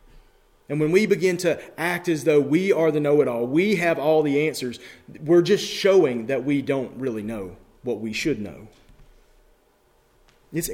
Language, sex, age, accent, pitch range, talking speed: English, male, 30-49, American, 120-155 Hz, 170 wpm